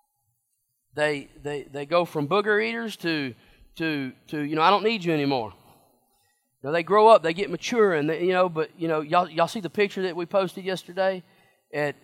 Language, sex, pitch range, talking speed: English, male, 140-185 Hz, 205 wpm